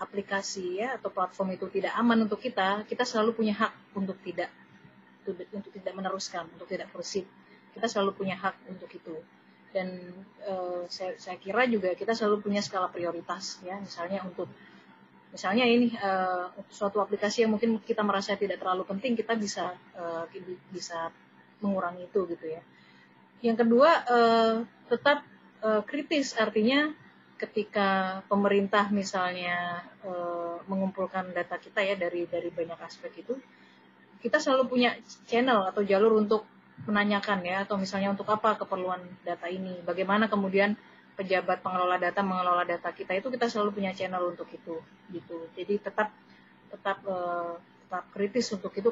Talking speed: 150 wpm